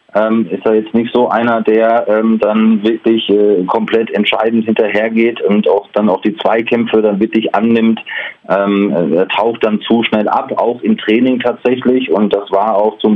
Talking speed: 180 wpm